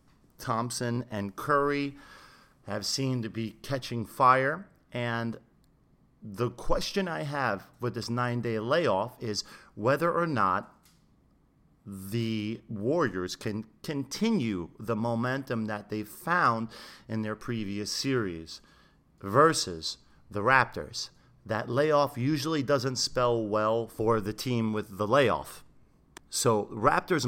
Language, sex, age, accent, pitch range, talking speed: English, male, 40-59, American, 110-140 Hz, 115 wpm